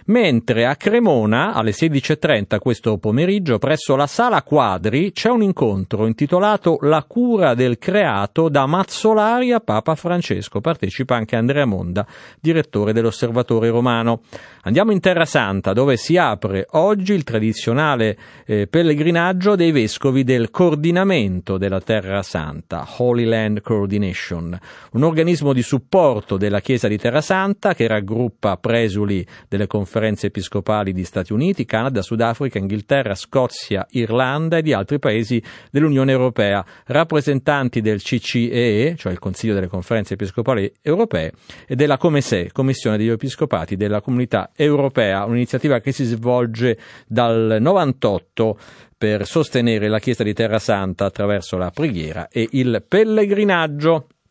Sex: male